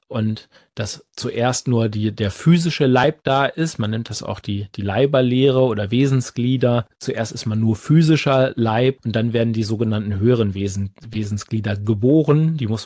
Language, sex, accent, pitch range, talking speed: German, male, German, 105-130 Hz, 170 wpm